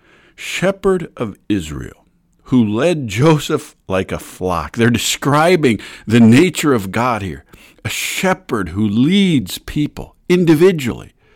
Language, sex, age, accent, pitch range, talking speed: English, male, 50-69, American, 95-135 Hz, 115 wpm